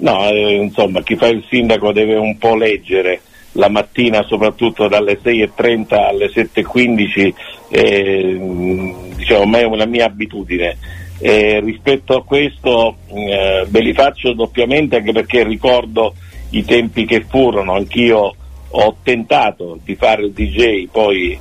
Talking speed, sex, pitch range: 130 wpm, male, 100-115 Hz